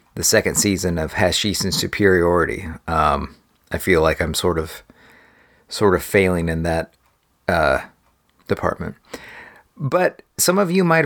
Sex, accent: male, American